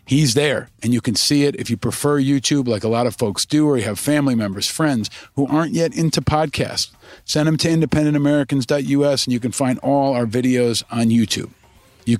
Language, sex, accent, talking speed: English, male, American, 205 wpm